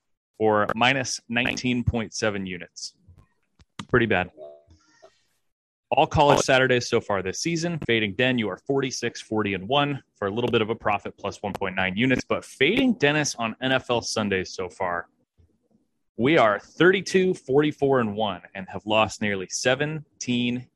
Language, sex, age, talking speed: English, male, 30-49, 135 wpm